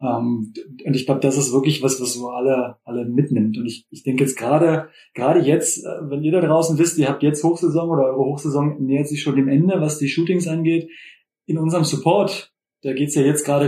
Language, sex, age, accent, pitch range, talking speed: German, male, 20-39, German, 135-155 Hz, 220 wpm